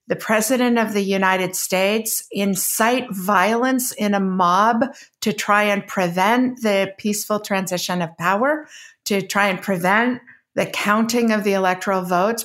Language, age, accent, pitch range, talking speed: English, 50-69, American, 185-225 Hz, 145 wpm